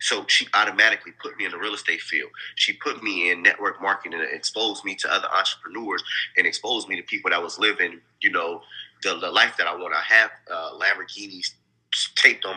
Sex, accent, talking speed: male, American, 210 wpm